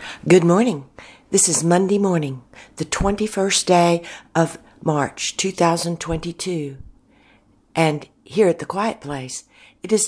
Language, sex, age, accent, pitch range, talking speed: English, female, 60-79, American, 140-235 Hz, 120 wpm